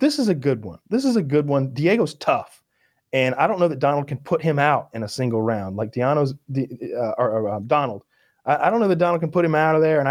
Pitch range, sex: 115-150 Hz, male